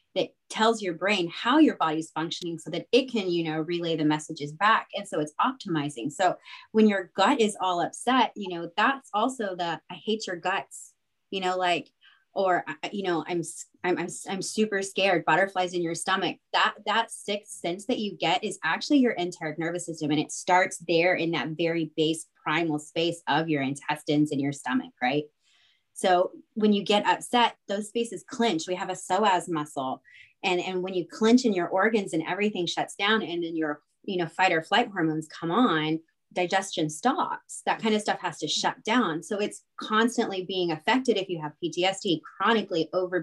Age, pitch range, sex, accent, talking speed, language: 20-39, 160-210 Hz, female, American, 195 wpm, English